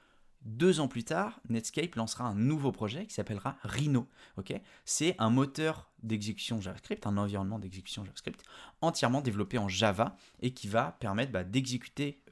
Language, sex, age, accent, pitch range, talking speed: French, male, 20-39, French, 100-130 Hz, 155 wpm